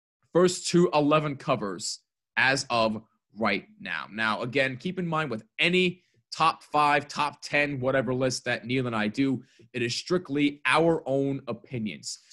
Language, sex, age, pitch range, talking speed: English, male, 20-39, 115-165 Hz, 155 wpm